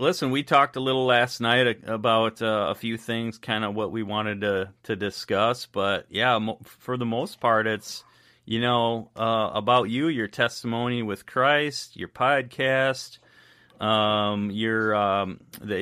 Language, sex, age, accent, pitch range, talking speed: English, male, 30-49, American, 100-120 Hz, 165 wpm